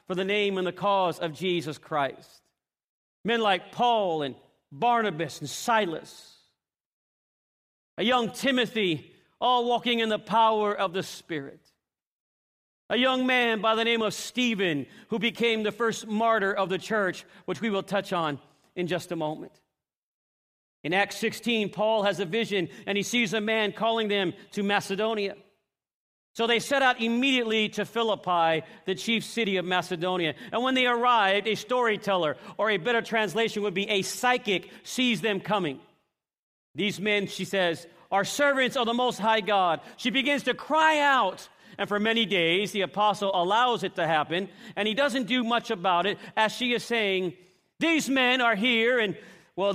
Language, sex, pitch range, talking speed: English, male, 185-230 Hz, 170 wpm